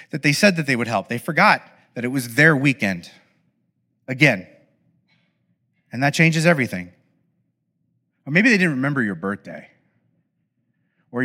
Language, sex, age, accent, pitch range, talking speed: English, male, 30-49, American, 125-175 Hz, 145 wpm